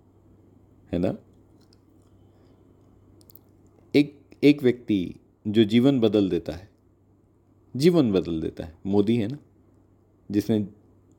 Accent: native